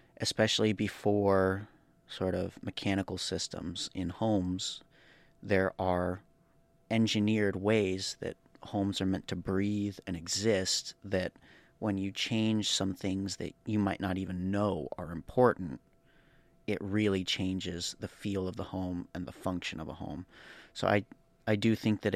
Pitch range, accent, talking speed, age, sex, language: 90-105 Hz, American, 145 wpm, 30-49, male, English